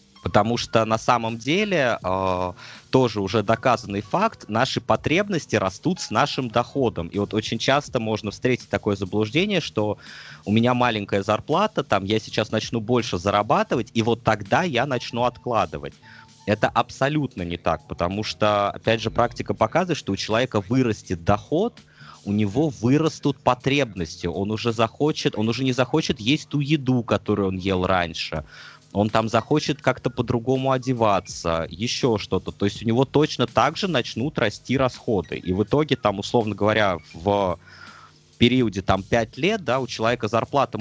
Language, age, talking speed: Russian, 20-39, 155 wpm